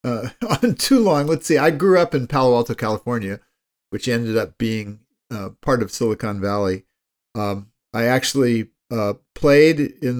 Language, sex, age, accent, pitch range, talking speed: English, male, 50-69, American, 110-135 Hz, 165 wpm